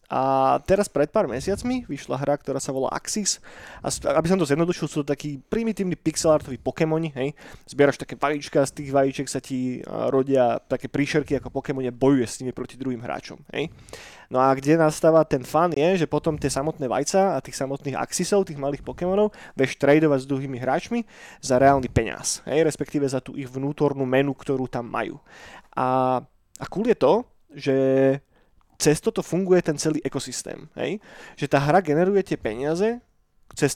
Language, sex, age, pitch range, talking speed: Slovak, male, 20-39, 135-175 Hz, 180 wpm